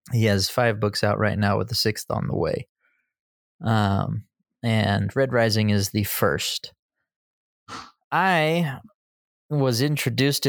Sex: male